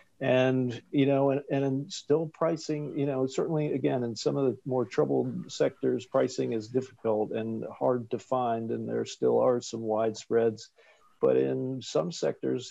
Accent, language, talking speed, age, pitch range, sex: American, English, 165 wpm, 50-69, 115-140 Hz, male